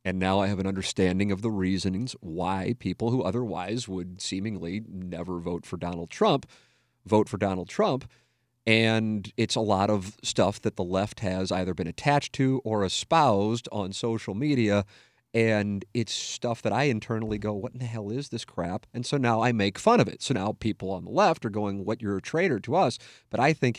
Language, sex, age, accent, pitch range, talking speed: English, male, 40-59, American, 95-115 Hz, 205 wpm